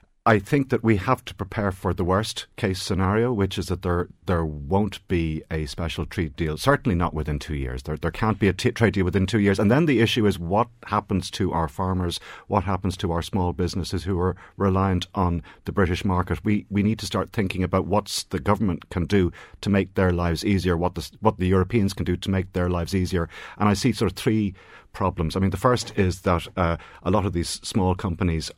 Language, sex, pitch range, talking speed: English, male, 85-100 Hz, 235 wpm